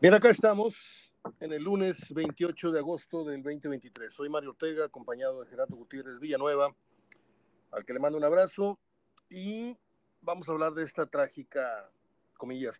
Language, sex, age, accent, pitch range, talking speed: Spanish, male, 50-69, Mexican, 135-180 Hz, 155 wpm